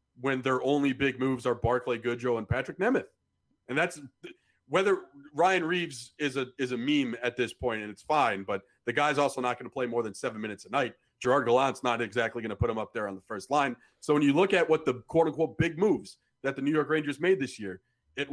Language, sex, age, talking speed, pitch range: English, male, 40-59, 245 wpm, 130-185 Hz